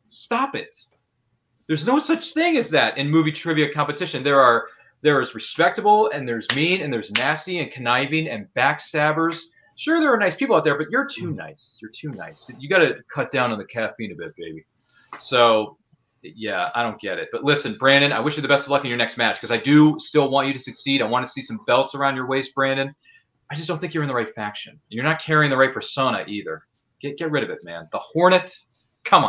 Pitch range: 115-155 Hz